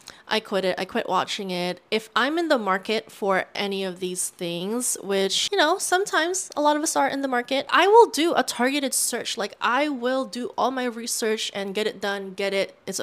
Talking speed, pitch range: 225 wpm, 190-245 Hz